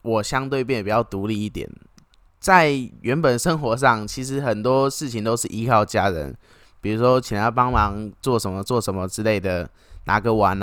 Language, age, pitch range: Chinese, 20-39, 100-140 Hz